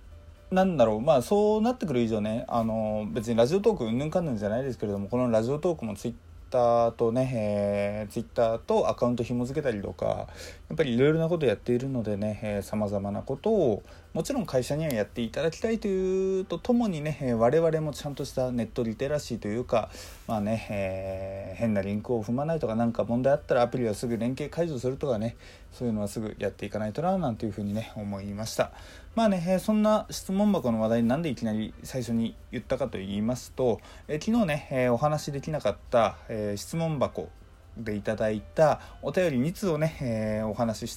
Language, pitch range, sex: Japanese, 105-145 Hz, male